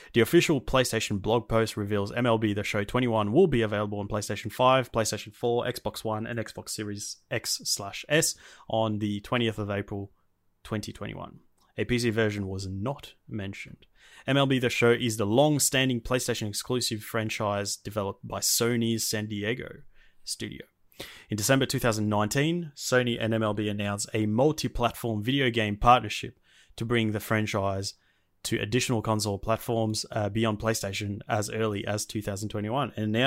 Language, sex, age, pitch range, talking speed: English, male, 20-39, 105-125 Hz, 145 wpm